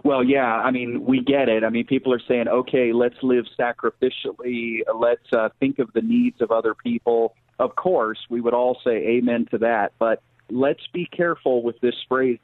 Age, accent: 40-59, American